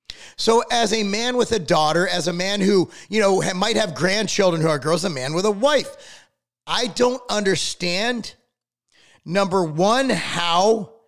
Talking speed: 170 wpm